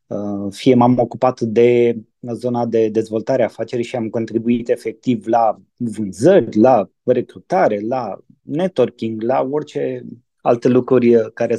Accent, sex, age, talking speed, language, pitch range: native, male, 20-39, 120 wpm, Romanian, 115-140 Hz